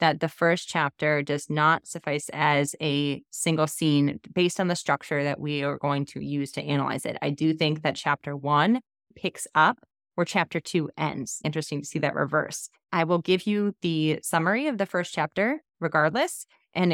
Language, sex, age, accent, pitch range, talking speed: English, female, 20-39, American, 150-185 Hz, 190 wpm